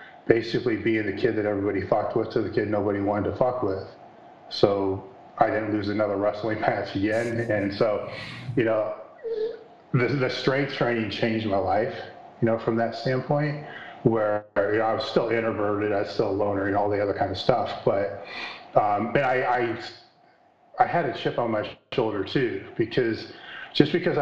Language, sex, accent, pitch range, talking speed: English, male, American, 105-120 Hz, 185 wpm